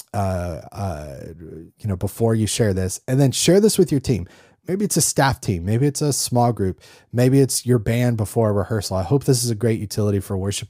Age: 30-49